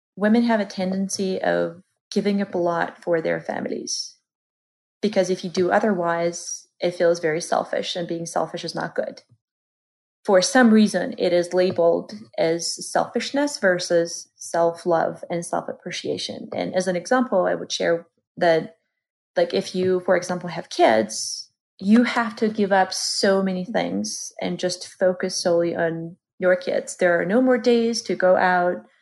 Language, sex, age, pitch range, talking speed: English, female, 30-49, 170-220 Hz, 160 wpm